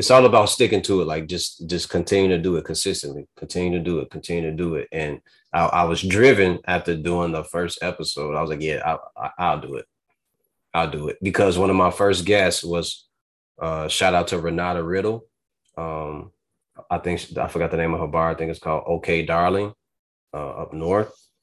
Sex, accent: male, American